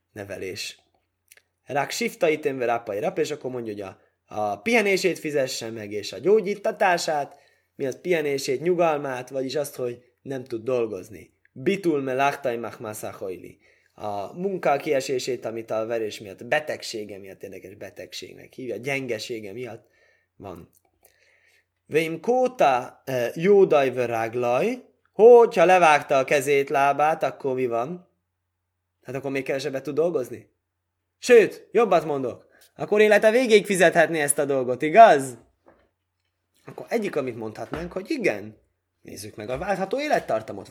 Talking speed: 130 wpm